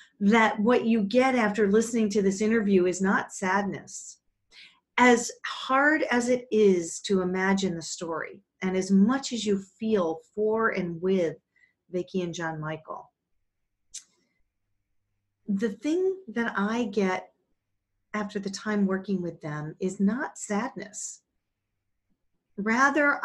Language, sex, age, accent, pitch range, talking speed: English, female, 40-59, American, 175-215 Hz, 125 wpm